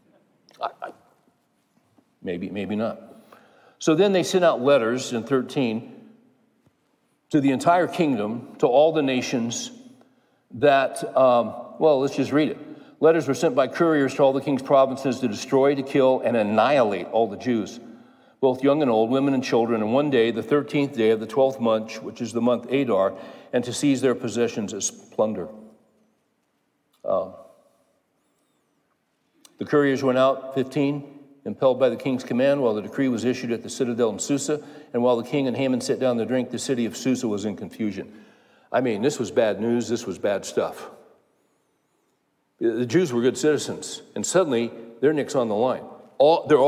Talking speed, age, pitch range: 170 wpm, 60-79, 120-145 Hz